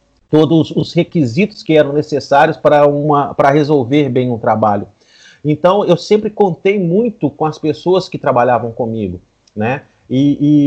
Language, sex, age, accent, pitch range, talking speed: Portuguese, male, 40-59, Brazilian, 140-180 Hz, 155 wpm